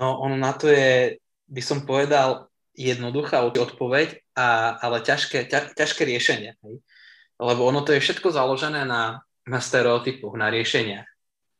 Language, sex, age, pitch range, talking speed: Slovak, male, 20-39, 120-145 Hz, 140 wpm